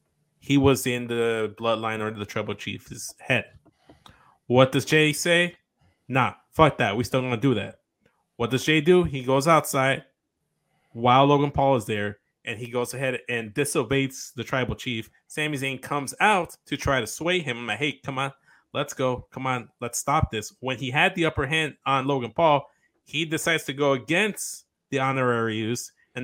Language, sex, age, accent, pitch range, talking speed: English, male, 20-39, American, 115-140 Hz, 190 wpm